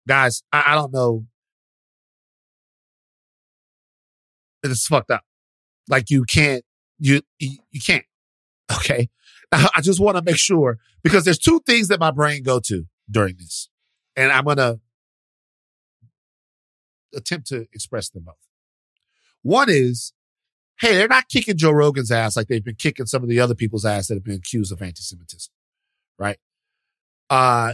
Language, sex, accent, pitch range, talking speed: English, male, American, 105-150 Hz, 145 wpm